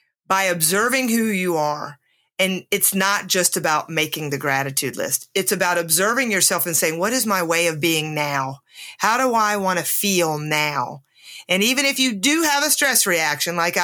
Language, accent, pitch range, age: English, American, 165-215 Hz, 40-59